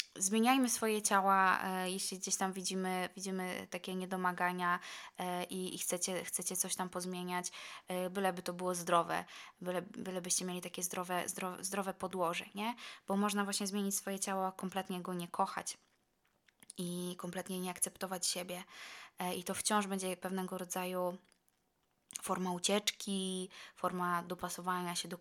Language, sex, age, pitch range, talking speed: Polish, female, 20-39, 180-195 Hz, 145 wpm